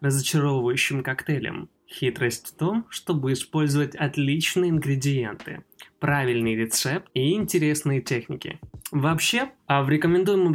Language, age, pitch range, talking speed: Russian, 20-39, 125-160 Hz, 100 wpm